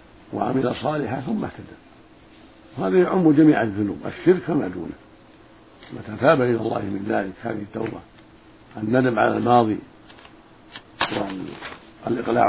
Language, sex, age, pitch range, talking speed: Arabic, male, 50-69, 110-130 Hz, 100 wpm